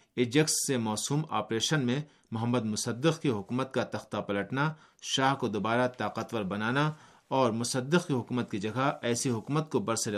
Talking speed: 160 wpm